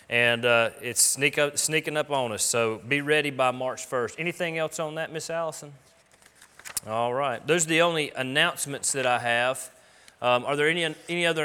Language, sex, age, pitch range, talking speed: English, male, 30-49, 115-145 Hz, 195 wpm